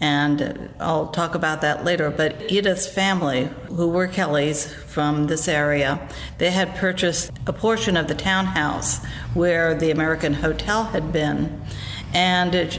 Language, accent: English, American